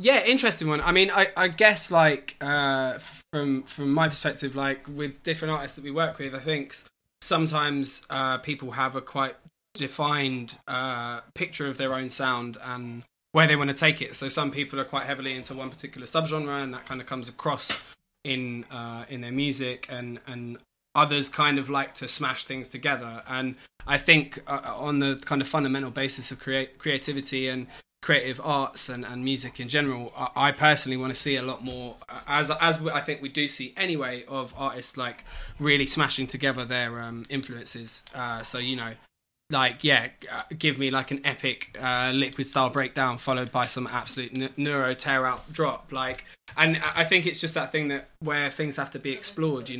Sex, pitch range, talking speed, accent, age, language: male, 130-145 Hz, 195 wpm, British, 20-39, English